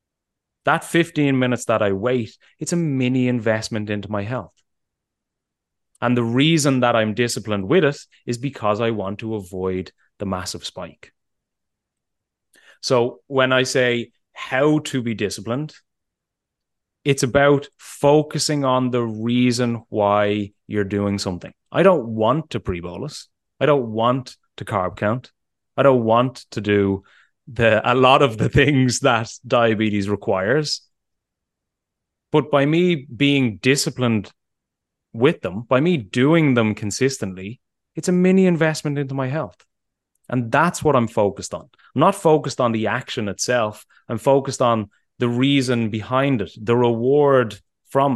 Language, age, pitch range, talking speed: English, 30-49, 105-140 Hz, 145 wpm